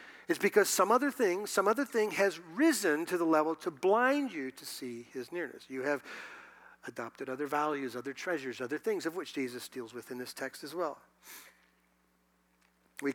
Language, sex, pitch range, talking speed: English, male, 120-175 Hz, 185 wpm